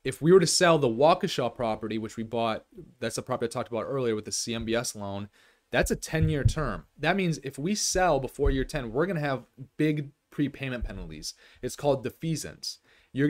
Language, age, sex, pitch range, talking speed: English, 30-49, male, 110-135 Hz, 200 wpm